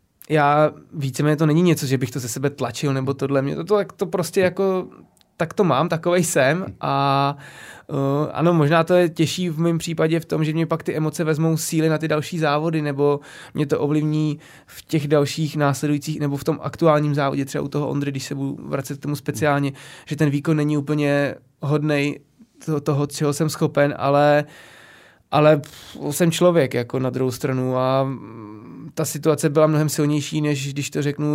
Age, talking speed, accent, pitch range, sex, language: 20-39, 190 wpm, native, 140-155 Hz, male, Czech